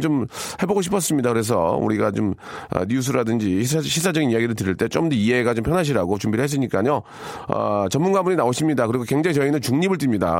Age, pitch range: 40-59, 105-145 Hz